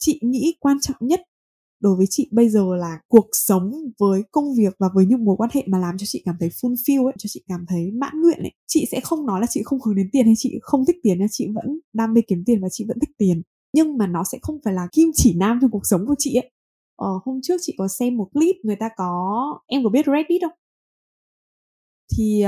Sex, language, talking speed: female, Vietnamese, 255 wpm